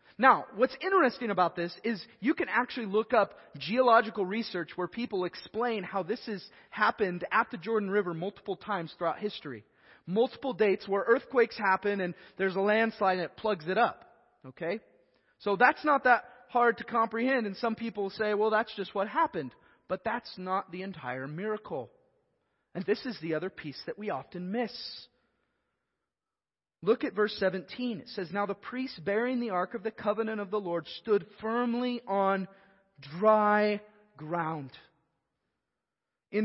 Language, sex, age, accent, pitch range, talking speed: English, male, 30-49, American, 185-240 Hz, 165 wpm